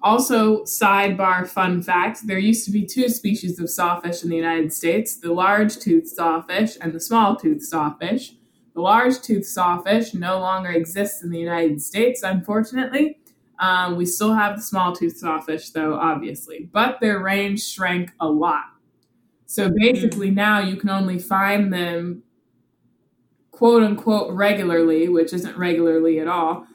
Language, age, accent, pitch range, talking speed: English, 20-39, American, 175-215 Hz, 145 wpm